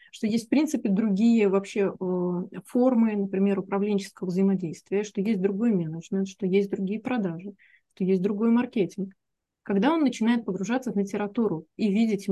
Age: 20-39